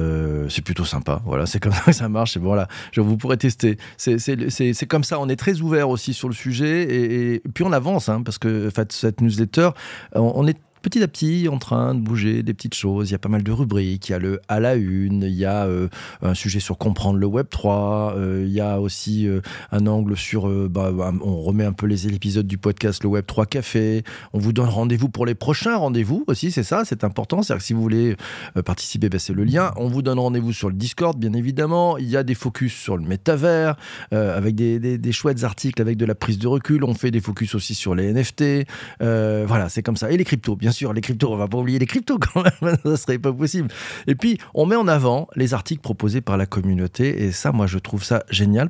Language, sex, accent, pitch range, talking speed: French, male, French, 100-130 Hz, 260 wpm